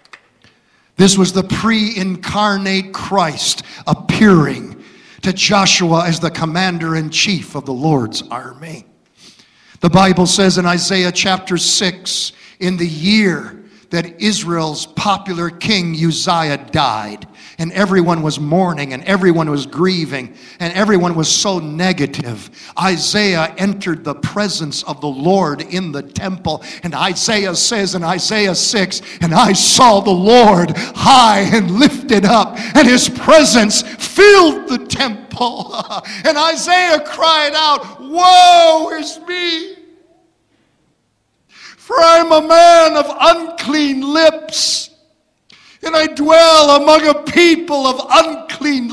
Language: English